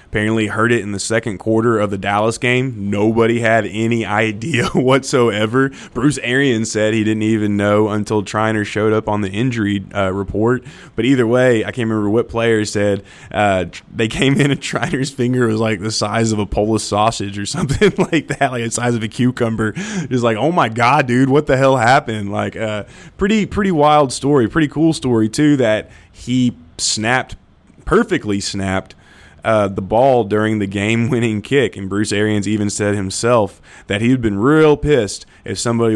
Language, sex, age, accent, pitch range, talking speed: English, male, 20-39, American, 105-135 Hz, 185 wpm